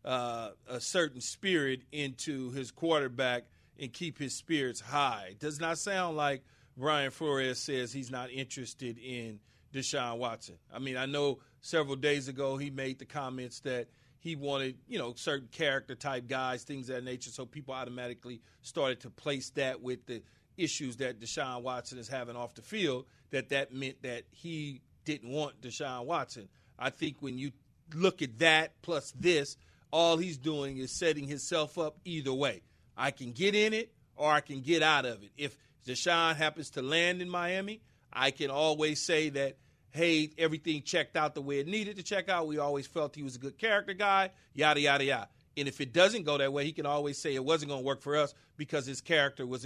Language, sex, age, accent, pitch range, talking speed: English, male, 40-59, American, 130-155 Hz, 200 wpm